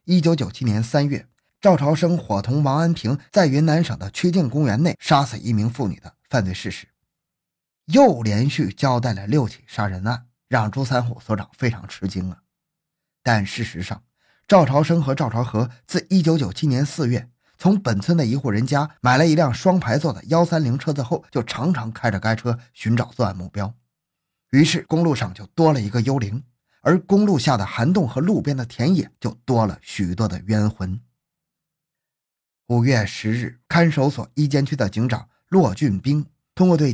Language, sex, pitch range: Chinese, male, 110-155 Hz